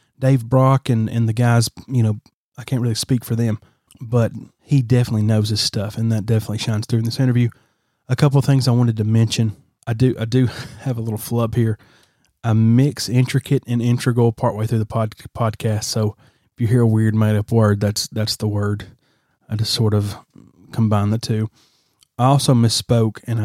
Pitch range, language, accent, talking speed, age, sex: 110-125 Hz, English, American, 200 wpm, 30-49, male